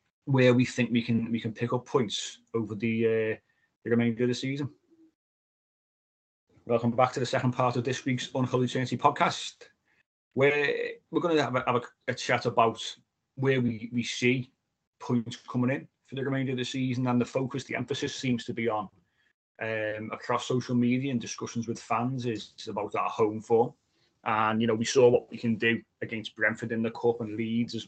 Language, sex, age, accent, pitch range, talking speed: English, male, 30-49, British, 115-125 Hz, 200 wpm